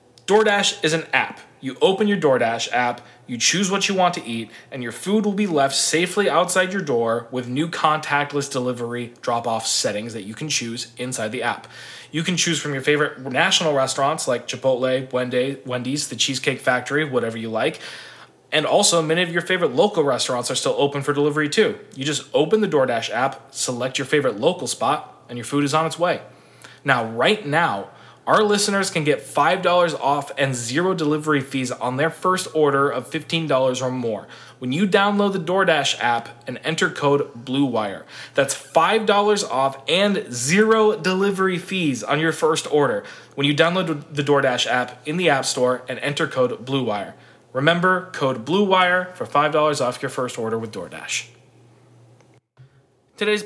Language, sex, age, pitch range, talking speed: English, male, 20-39, 125-175 Hz, 175 wpm